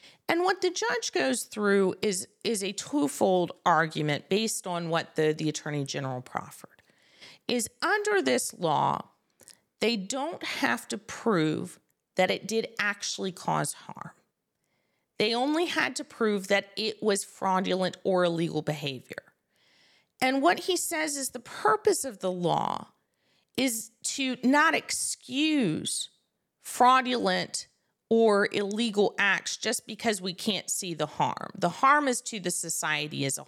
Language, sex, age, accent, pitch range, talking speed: English, female, 40-59, American, 170-235 Hz, 140 wpm